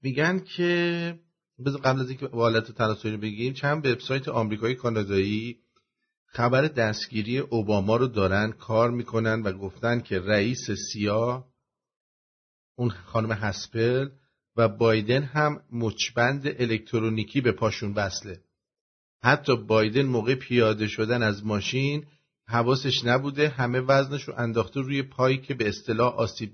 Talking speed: 125 wpm